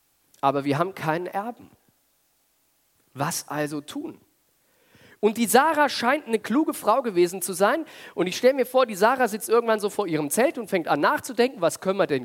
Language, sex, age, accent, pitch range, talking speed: German, male, 40-59, German, 180-280 Hz, 190 wpm